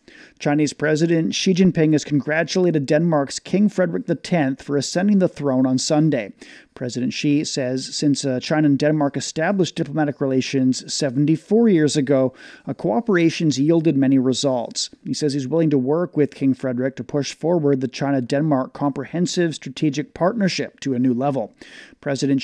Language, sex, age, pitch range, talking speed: English, male, 40-59, 135-165 Hz, 145 wpm